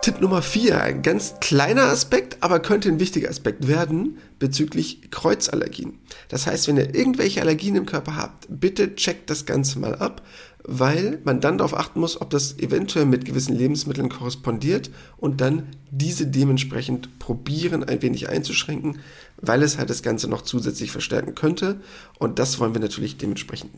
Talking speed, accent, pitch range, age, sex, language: 165 wpm, German, 130-170 Hz, 40-59, male, German